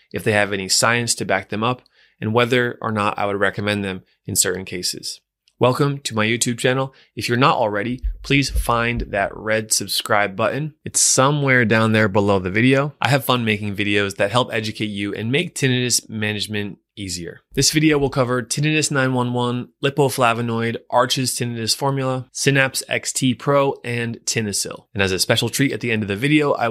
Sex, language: male, English